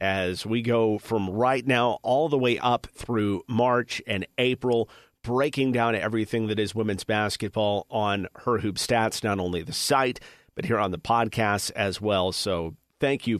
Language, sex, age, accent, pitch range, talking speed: English, male, 40-59, American, 105-125 Hz, 175 wpm